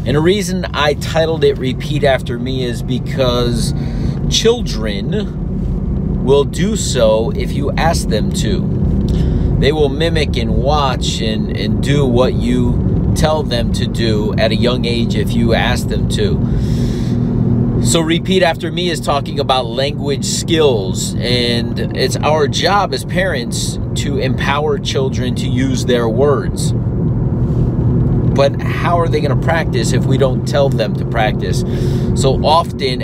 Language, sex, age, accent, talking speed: English, male, 40-59, American, 145 wpm